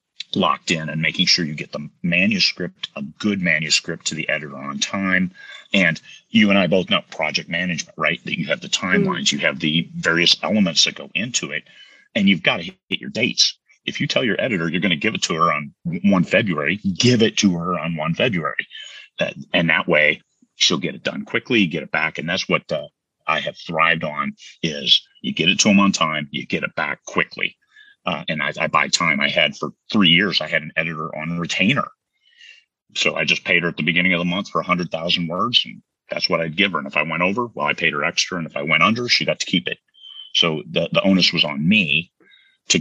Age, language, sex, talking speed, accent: 40-59, English, male, 240 wpm, American